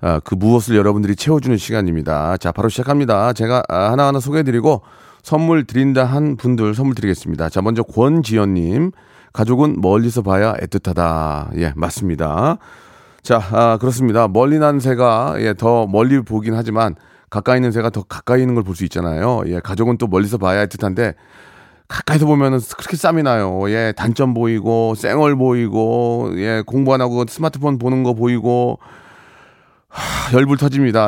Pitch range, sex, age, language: 95-125 Hz, male, 30-49, Korean